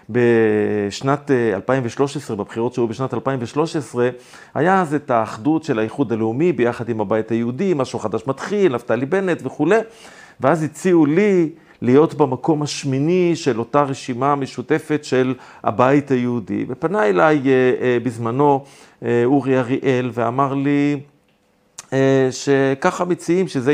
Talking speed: 115 wpm